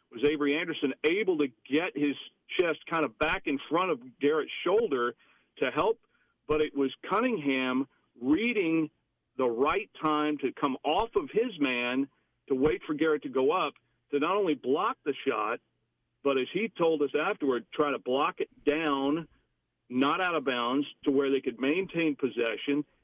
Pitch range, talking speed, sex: 135-175 Hz, 170 wpm, male